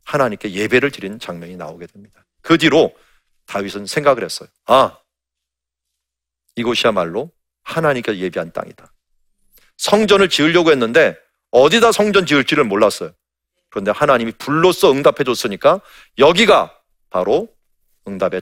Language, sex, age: Korean, male, 40-59